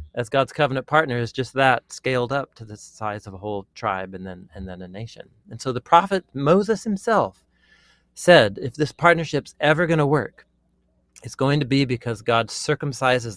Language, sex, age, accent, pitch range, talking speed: English, male, 40-59, American, 105-140 Hz, 195 wpm